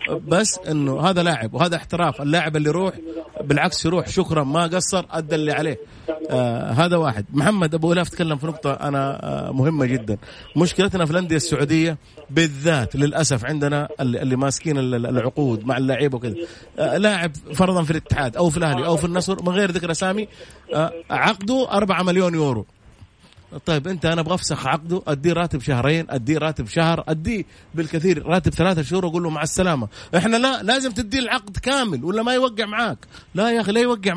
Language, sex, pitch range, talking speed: Arabic, male, 150-200 Hz, 170 wpm